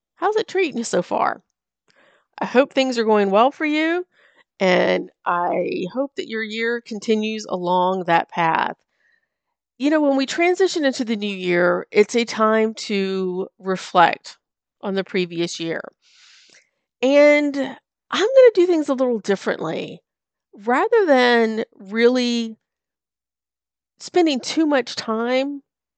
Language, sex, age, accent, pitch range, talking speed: English, female, 40-59, American, 195-270 Hz, 135 wpm